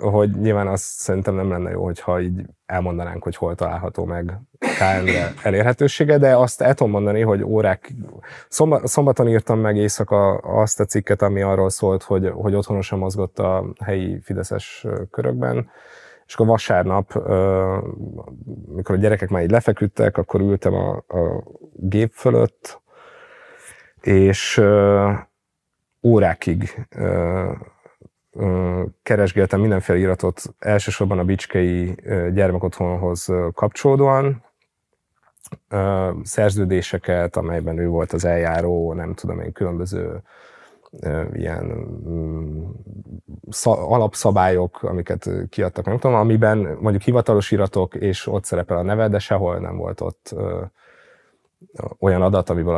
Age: 30-49